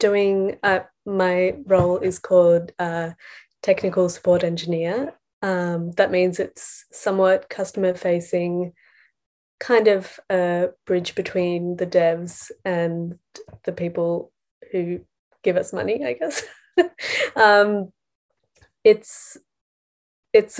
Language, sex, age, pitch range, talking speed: English, female, 20-39, 180-200 Hz, 105 wpm